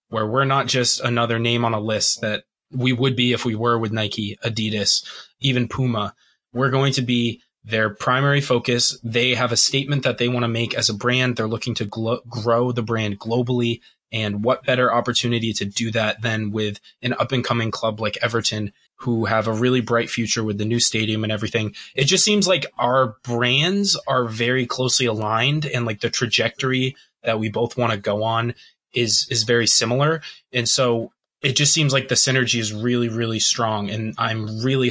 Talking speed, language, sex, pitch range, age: 195 wpm, English, male, 115-130 Hz, 20-39